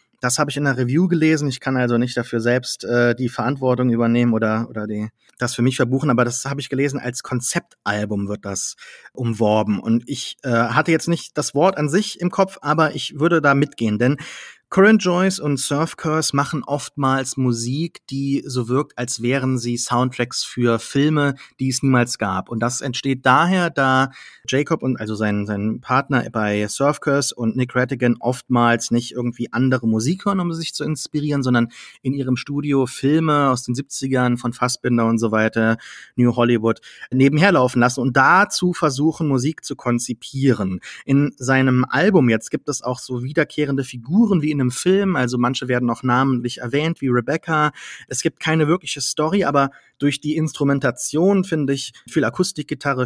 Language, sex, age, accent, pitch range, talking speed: German, male, 30-49, German, 120-150 Hz, 180 wpm